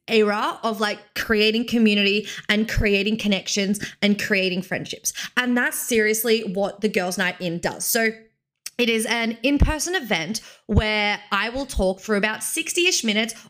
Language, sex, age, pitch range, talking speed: English, female, 20-39, 205-270 Hz, 155 wpm